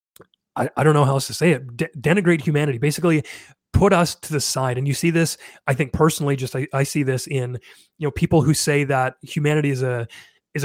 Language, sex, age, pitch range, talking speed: English, male, 30-49, 135-165 Hz, 230 wpm